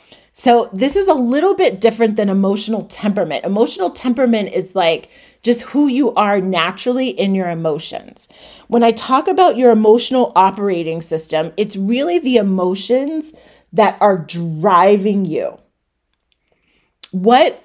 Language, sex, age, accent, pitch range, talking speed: English, female, 30-49, American, 185-245 Hz, 135 wpm